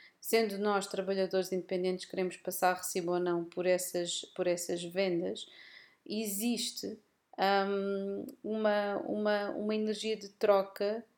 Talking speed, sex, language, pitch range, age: 120 wpm, female, Portuguese, 180-210 Hz, 30-49